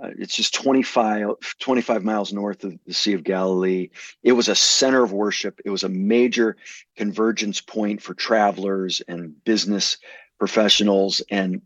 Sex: male